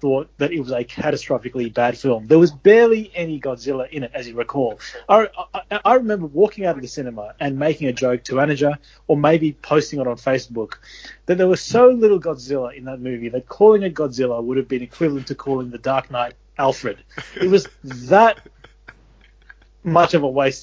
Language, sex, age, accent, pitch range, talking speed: English, male, 30-49, Australian, 135-170 Hz, 200 wpm